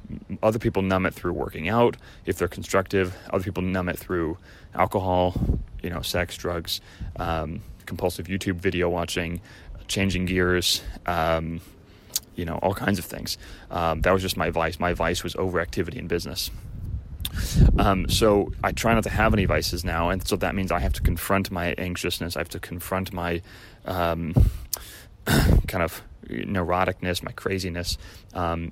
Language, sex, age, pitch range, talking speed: English, male, 30-49, 85-95 Hz, 165 wpm